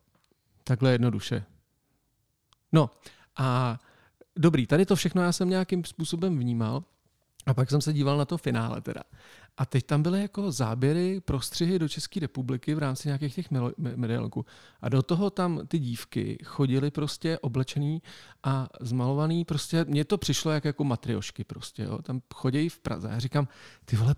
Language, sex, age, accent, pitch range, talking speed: Czech, male, 40-59, native, 130-170 Hz, 170 wpm